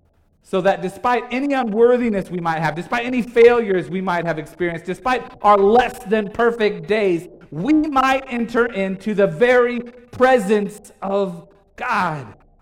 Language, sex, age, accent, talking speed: English, male, 40-59, American, 145 wpm